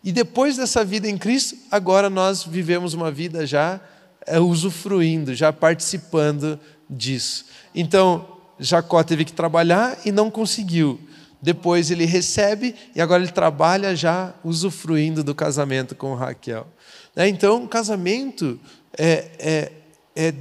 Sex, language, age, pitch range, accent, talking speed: male, Portuguese, 40-59, 170-220 Hz, Brazilian, 125 wpm